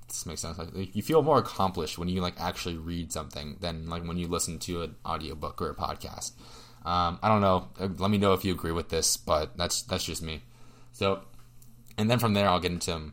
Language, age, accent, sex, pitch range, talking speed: English, 20-39, American, male, 90-115 Hz, 230 wpm